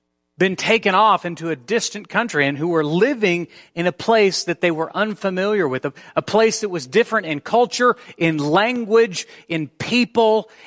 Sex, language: male, English